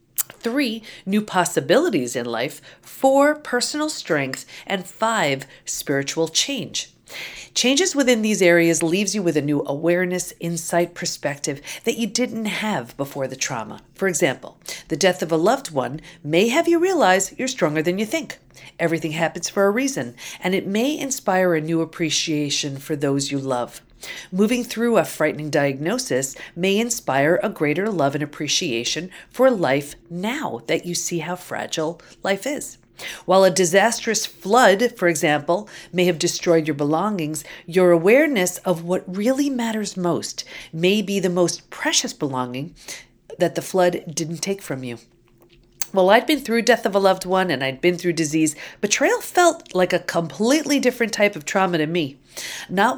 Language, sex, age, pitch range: English, female, 40-59, 155-215 Hz